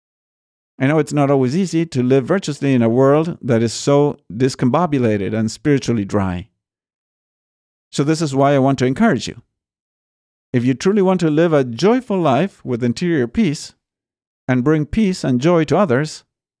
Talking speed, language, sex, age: 170 wpm, English, male, 50-69